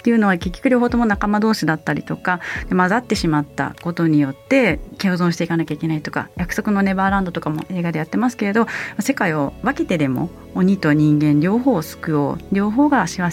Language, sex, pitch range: Japanese, female, 160-245 Hz